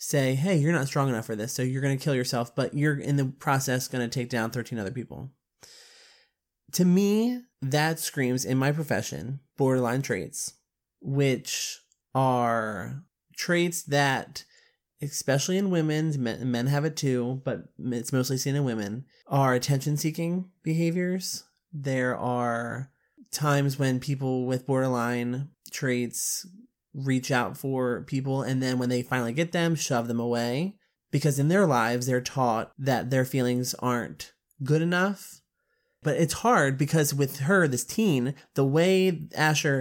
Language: English